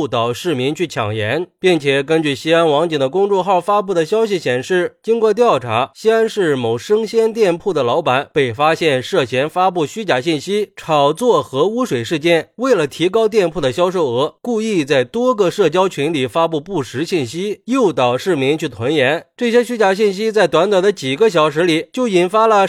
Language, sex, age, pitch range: Chinese, male, 20-39, 140-205 Hz